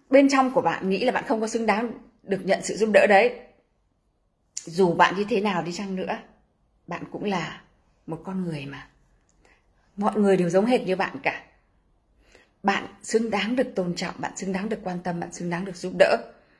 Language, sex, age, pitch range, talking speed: Vietnamese, female, 20-39, 180-240 Hz, 210 wpm